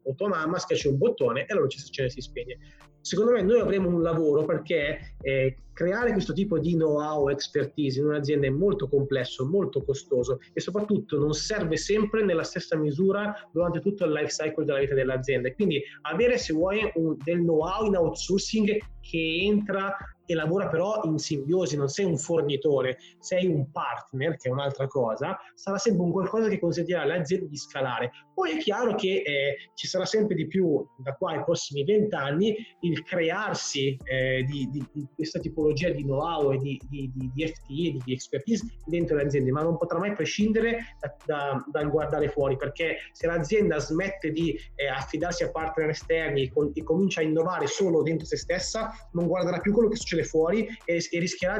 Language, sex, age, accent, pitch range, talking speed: Italian, male, 30-49, native, 145-190 Hz, 185 wpm